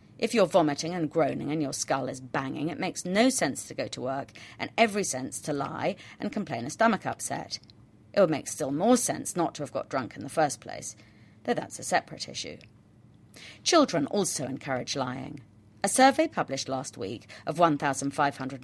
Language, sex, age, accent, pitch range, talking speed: English, female, 40-59, British, 135-180 Hz, 190 wpm